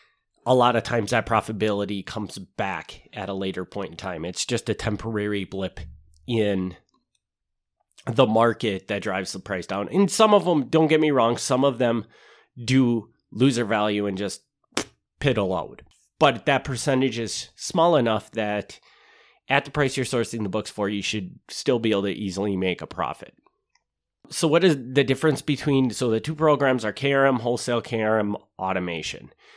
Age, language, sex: 30-49, English, male